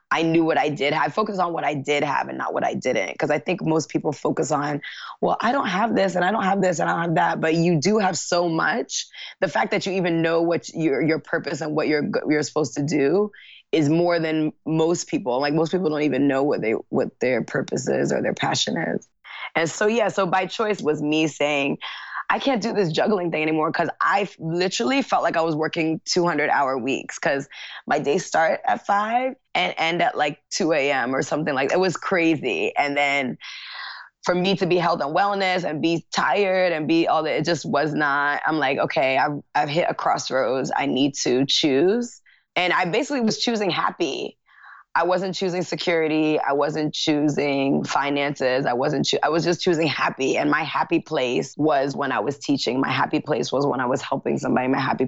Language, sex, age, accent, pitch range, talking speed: English, female, 20-39, American, 155-185 Hz, 220 wpm